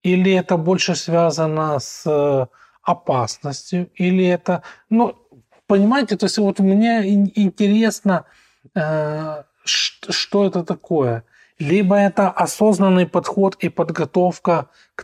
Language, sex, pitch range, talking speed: Russian, male, 140-185 Hz, 100 wpm